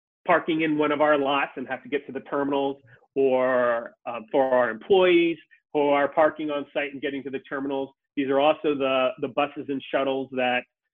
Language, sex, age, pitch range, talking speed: English, male, 30-49, 125-150 Hz, 205 wpm